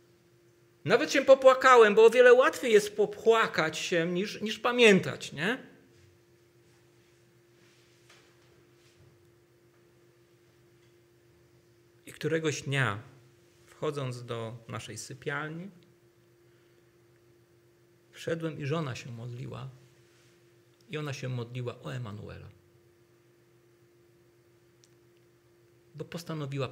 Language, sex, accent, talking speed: Polish, male, native, 75 wpm